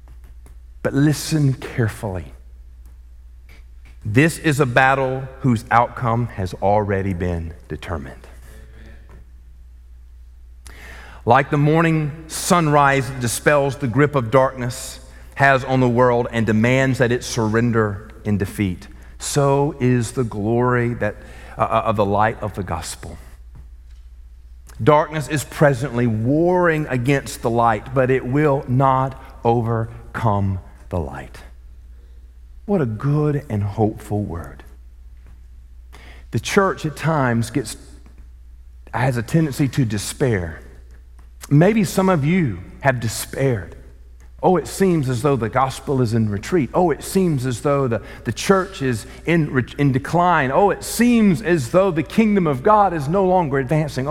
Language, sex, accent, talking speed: English, male, American, 130 wpm